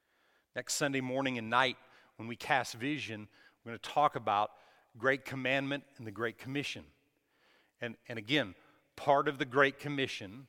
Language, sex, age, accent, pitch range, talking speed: English, male, 40-59, American, 110-140 Hz, 160 wpm